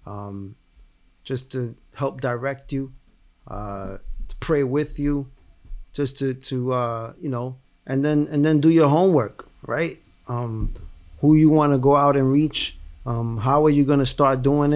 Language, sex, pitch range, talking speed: English, male, 115-140 Hz, 165 wpm